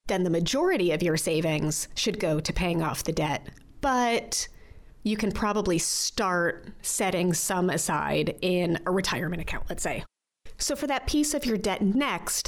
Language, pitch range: English, 175-240 Hz